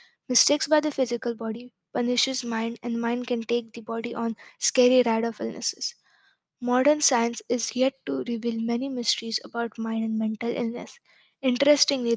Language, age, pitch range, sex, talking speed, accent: English, 20-39, 235-260 Hz, female, 160 wpm, Indian